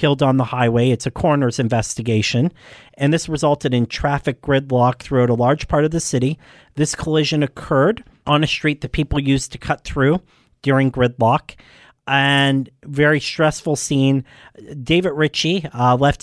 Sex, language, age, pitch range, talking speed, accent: male, English, 40-59, 130-150 Hz, 160 wpm, American